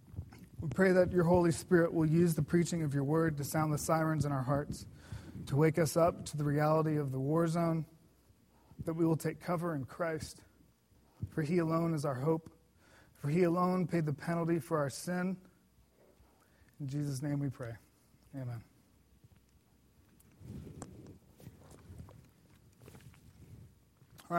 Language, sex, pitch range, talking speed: English, male, 145-180 Hz, 150 wpm